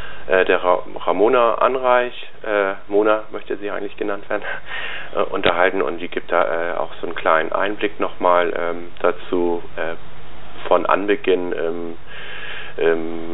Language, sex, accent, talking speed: German, male, German, 135 wpm